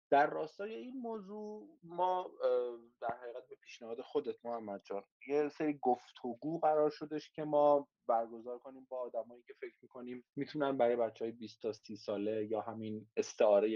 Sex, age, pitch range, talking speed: male, 30-49, 120-165 Hz, 160 wpm